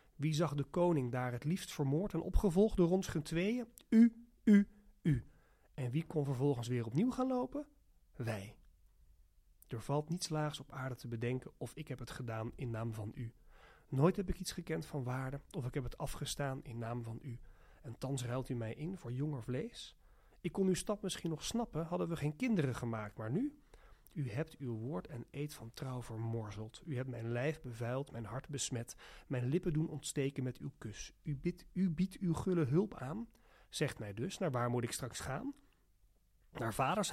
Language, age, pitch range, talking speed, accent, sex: Dutch, 40-59, 120-170 Hz, 200 wpm, Dutch, male